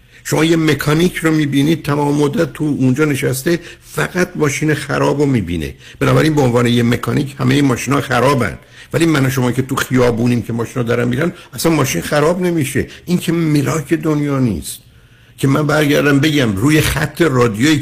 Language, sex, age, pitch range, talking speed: Persian, male, 60-79, 120-150 Hz, 160 wpm